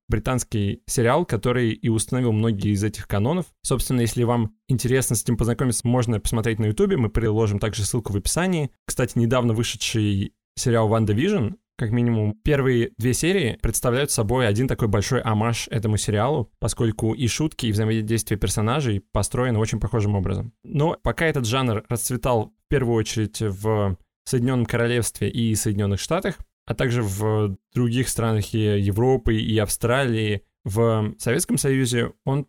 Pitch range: 110-125 Hz